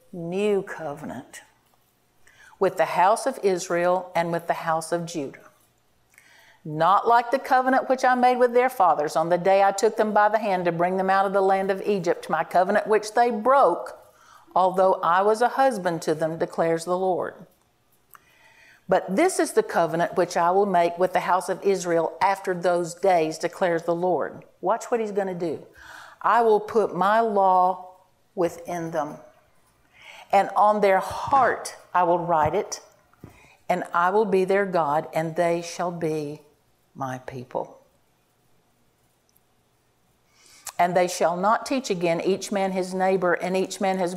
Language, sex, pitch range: English, female, 170-205 Hz